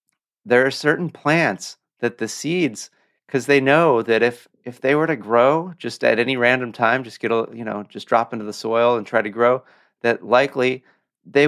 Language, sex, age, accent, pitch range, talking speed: English, male, 30-49, American, 115-150 Hz, 205 wpm